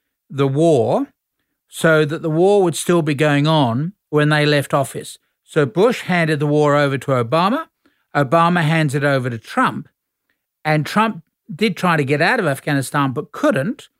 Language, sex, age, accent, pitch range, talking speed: English, male, 50-69, Australian, 135-165 Hz, 170 wpm